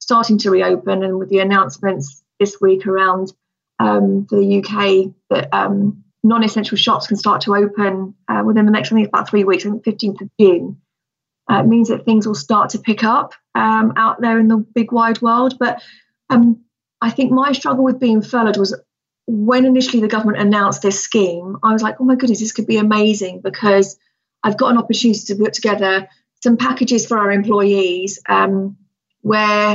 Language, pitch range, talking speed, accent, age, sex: English, 200-230 Hz, 190 wpm, British, 30-49, female